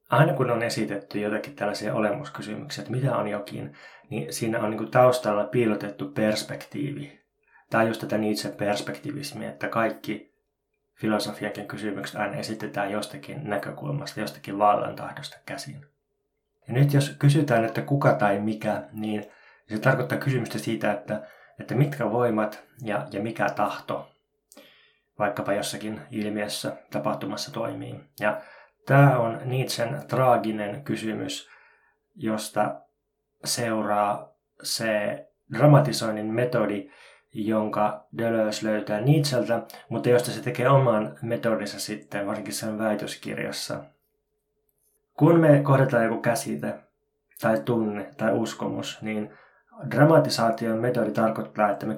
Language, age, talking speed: Finnish, 20-39, 115 wpm